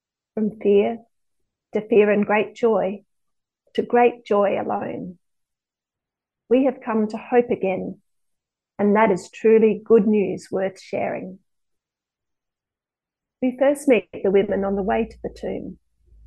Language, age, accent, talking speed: English, 30-49, Australian, 135 wpm